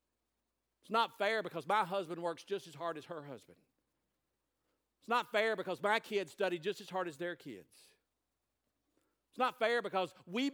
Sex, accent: male, American